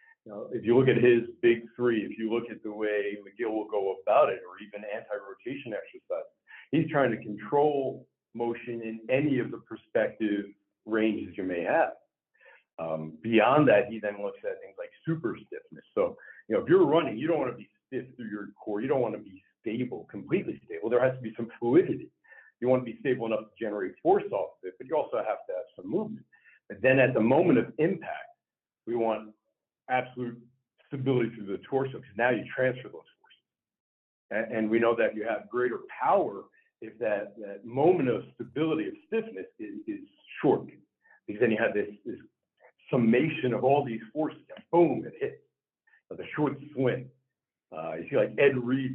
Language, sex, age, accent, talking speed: English, male, 50-69, American, 200 wpm